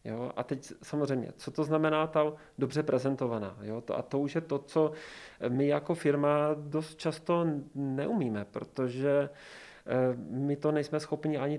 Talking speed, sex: 140 wpm, male